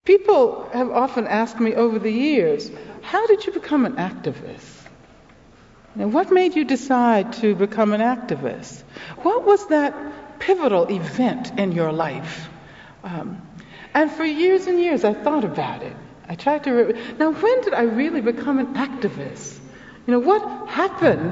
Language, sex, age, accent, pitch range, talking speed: English, female, 60-79, American, 180-275 Hz, 160 wpm